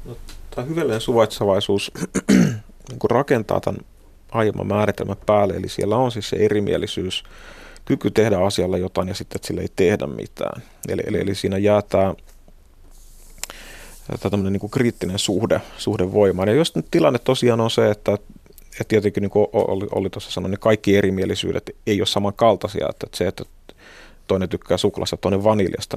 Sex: male